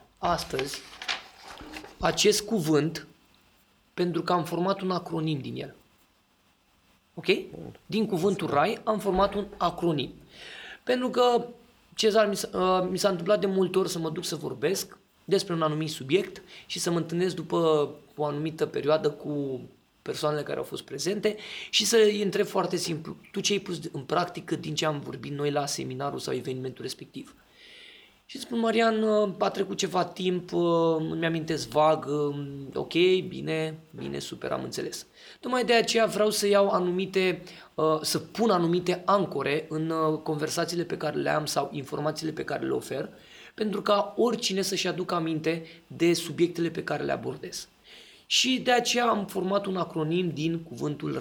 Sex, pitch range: male, 155-200 Hz